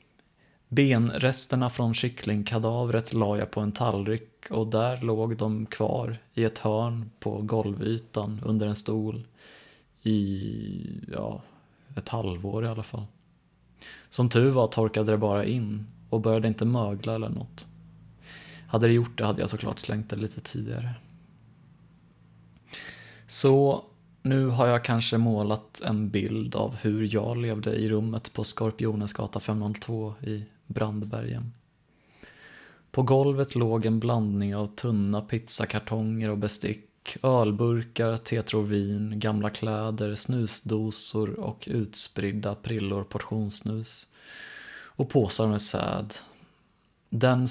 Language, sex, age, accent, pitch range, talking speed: Swedish, male, 20-39, native, 105-120 Hz, 120 wpm